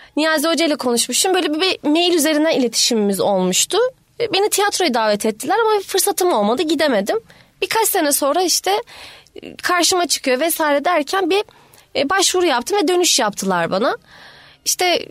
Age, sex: 20-39, female